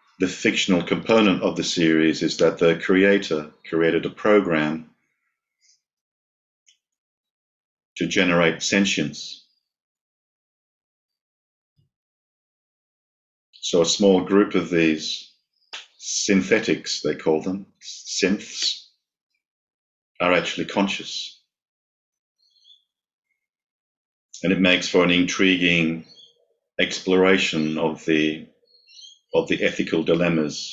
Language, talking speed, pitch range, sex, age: English, 85 wpm, 80-100 Hz, male, 50-69